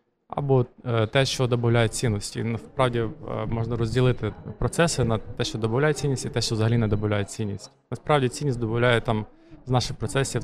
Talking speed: 160 wpm